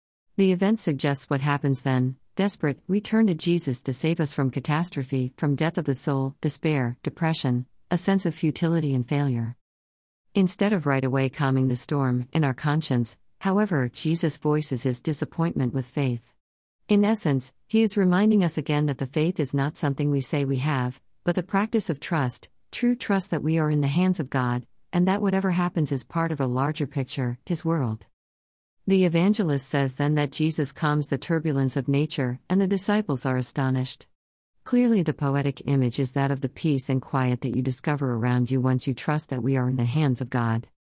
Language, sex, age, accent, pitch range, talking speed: English, female, 50-69, American, 130-165 Hz, 195 wpm